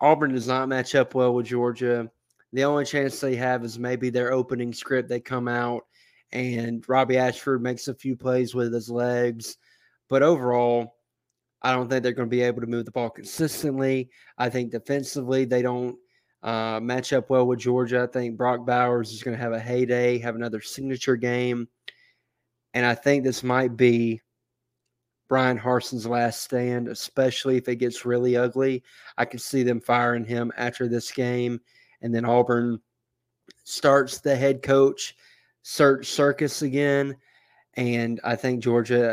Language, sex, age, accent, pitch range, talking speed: English, male, 20-39, American, 120-130 Hz, 170 wpm